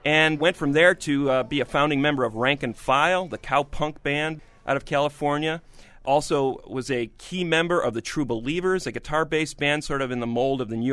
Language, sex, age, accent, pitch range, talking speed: English, male, 40-59, American, 120-150 Hz, 225 wpm